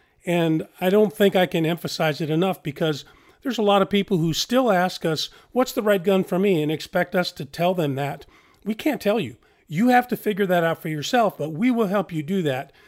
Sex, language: male, English